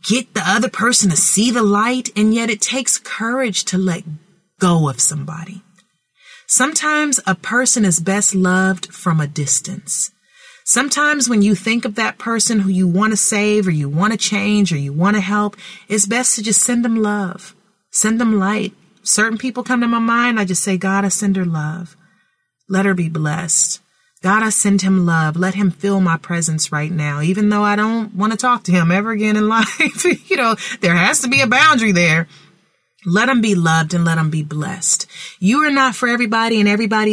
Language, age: English, 30-49